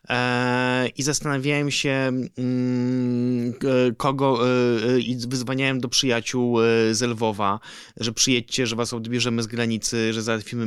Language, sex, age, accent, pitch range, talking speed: Polish, male, 20-39, native, 120-145 Hz, 105 wpm